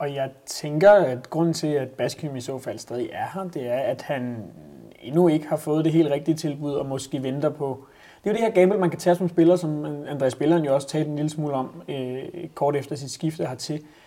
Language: Danish